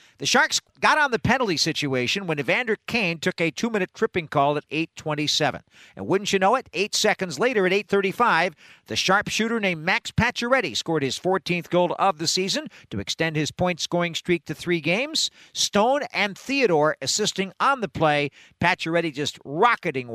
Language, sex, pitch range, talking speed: English, male, 150-195 Hz, 170 wpm